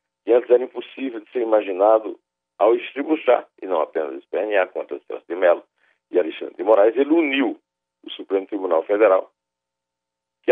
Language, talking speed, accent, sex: Portuguese, 165 wpm, Brazilian, male